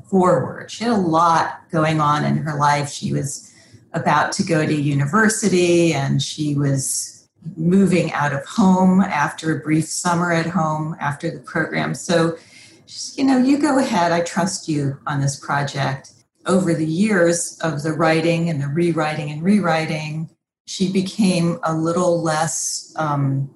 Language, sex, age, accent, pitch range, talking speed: English, female, 40-59, American, 155-185 Hz, 165 wpm